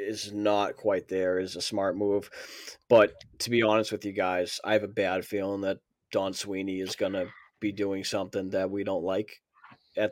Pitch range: 105-125 Hz